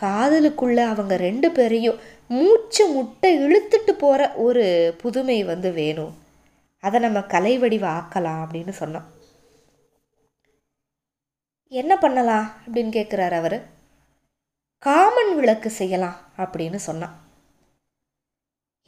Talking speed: 85 wpm